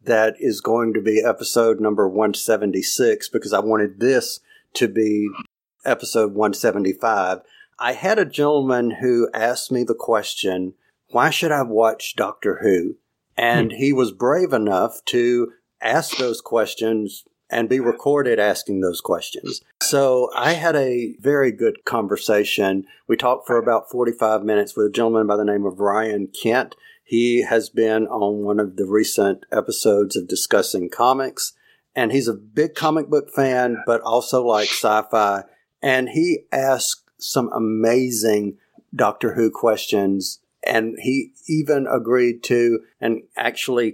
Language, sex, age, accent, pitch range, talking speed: English, male, 50-69, American, 110-130 Hz, 145 wpm